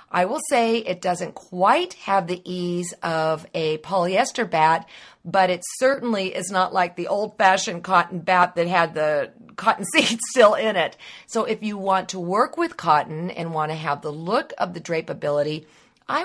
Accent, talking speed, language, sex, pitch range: American, 180 wpm, English, female, 170-215 Hz